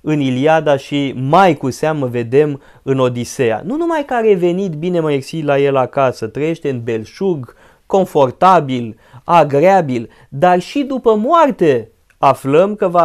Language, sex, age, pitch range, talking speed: Romanian, male, 30-49, 140-210 Hz, 145 wpm